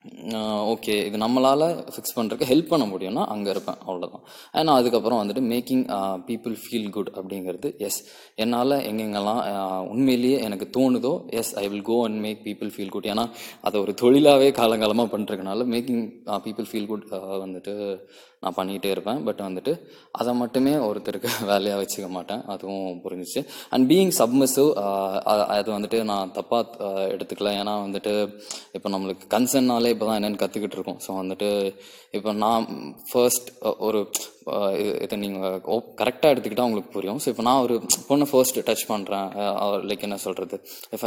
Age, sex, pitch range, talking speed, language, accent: 20-39, male, 100-120 Hz, 95 wpm, English, Indian